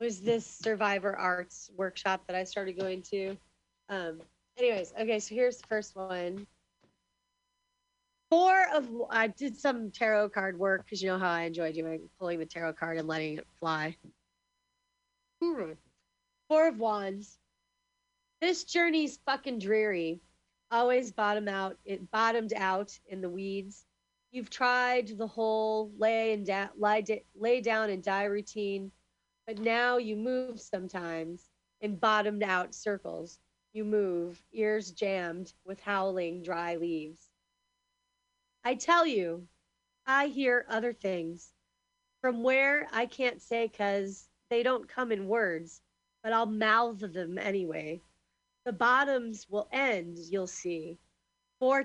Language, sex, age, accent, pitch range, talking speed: English, female, 30-49, American, 190-250 Hz, 135 wpm